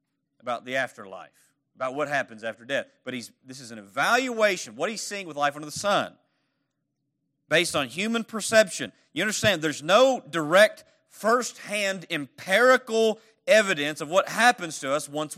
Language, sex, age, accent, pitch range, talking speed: English, male, 40-59, American, 140-185 Hz, 160 wpm